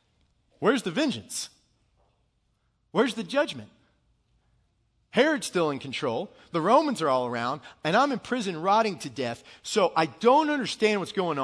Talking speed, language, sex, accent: 145 wpm, English, male, American